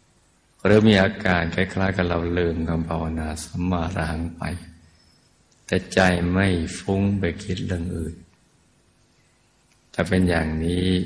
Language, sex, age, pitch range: Thai, male, 60-79, 80-95 Hz